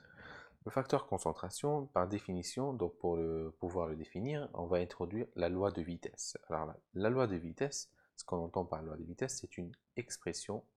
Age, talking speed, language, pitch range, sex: 30-49, 195 wpm, French, 80-95 Hz, male